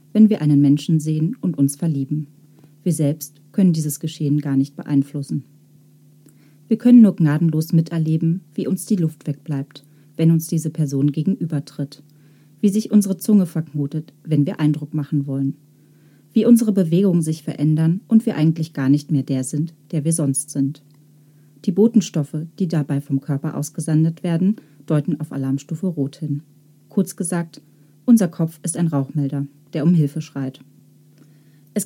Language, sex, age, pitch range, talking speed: German, female, 40-59, 145-170 Hz, 155 wpm